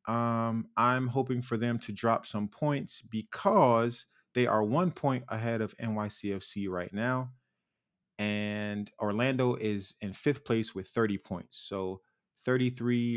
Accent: American